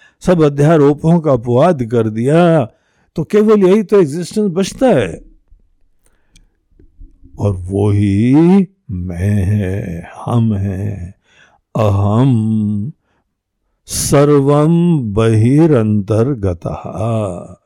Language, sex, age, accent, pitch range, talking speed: Hindi, male, 60-79, native, 100-150 Hz, 80 wpm